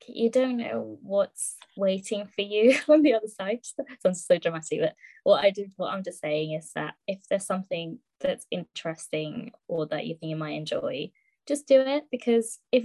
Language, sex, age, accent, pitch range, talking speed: English, female, 20-39, British, 180-225 Hz, 190 wpm